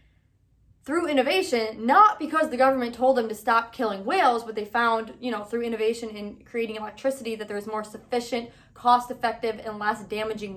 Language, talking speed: English, 170 wpm